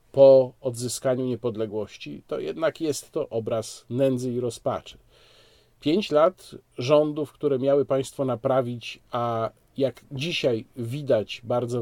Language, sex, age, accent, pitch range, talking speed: Polish, male, 40-59, native, 115-140 Hz, 115 wpm